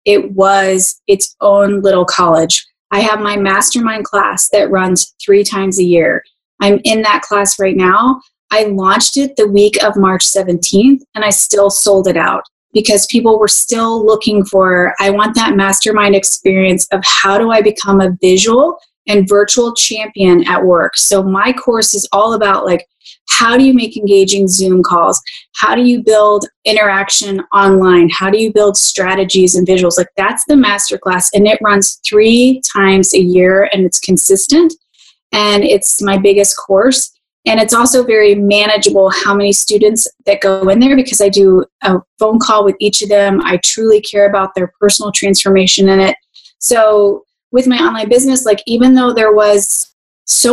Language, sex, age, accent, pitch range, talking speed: English, female, 20-39, American, 195-220 Hz, 175 wpm